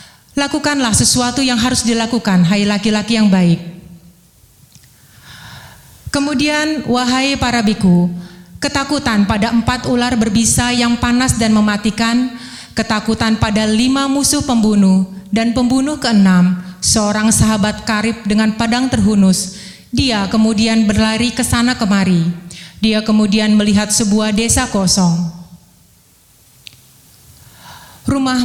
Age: 30-49